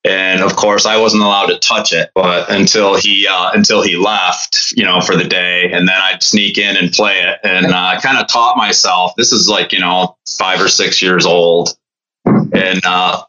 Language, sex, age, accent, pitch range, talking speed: English, male, 30-49, American, 95-110 Hz, 215 wpm